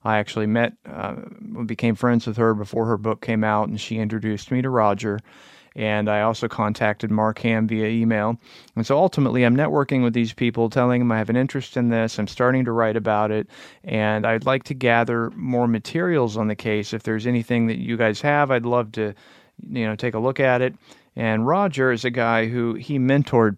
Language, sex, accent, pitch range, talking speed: English, male, American, 110-120 Hz, 210 wpm